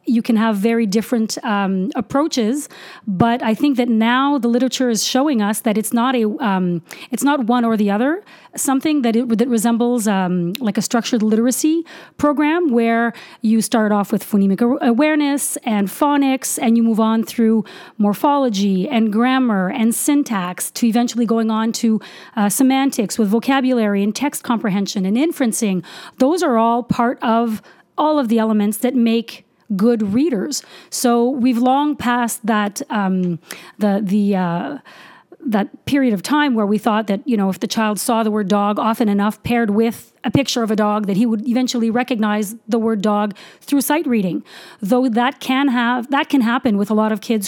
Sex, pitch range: female, 215-260 Hz